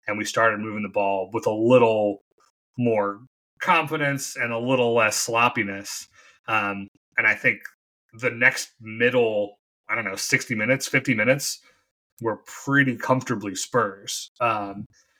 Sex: male